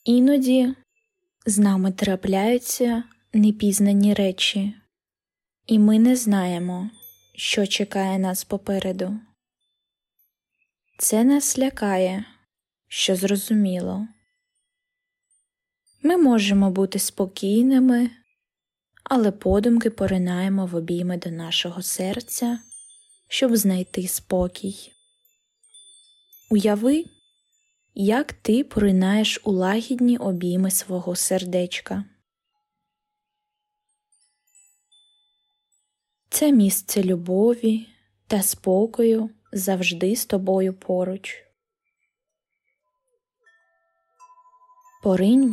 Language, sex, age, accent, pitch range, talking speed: Ukrainian, female, 20-39, native, 190-285 Hz, 70 wpm